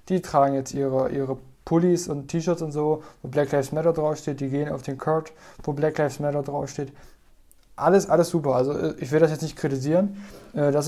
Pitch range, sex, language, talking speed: 140-155 Hz, male, German, 200 wpm